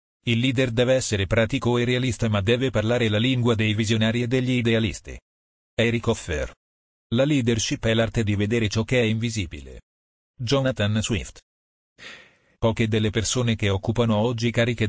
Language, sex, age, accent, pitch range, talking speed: Italian, male, 40-59, native, 100-120 Hz, 155 wpm